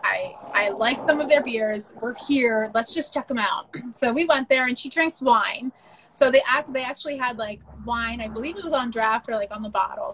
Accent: American